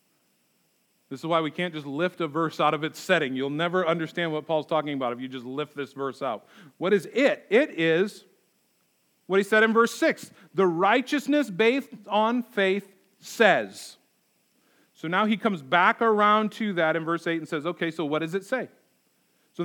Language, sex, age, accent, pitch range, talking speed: English, male, 40-59, American, 165-215 Hz, 195 wpm